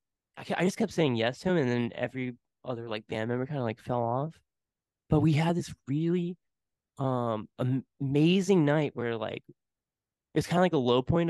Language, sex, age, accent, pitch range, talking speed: English, male, 20-39, American, 115-150 Hz, 190 wpm